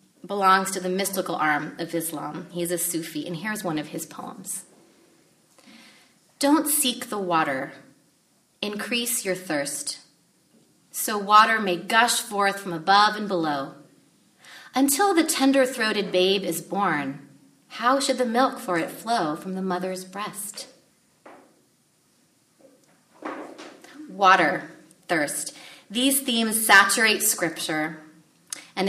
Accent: American